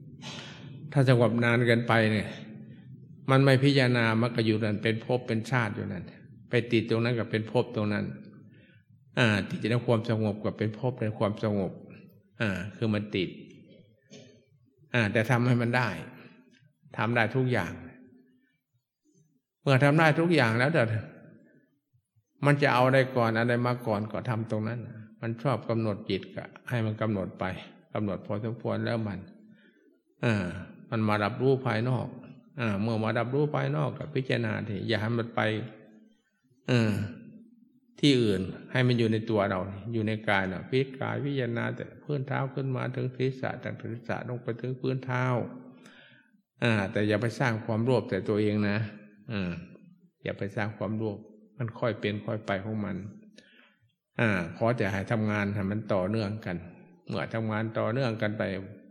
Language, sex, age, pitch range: English, male, 60-79, 110-130 Hz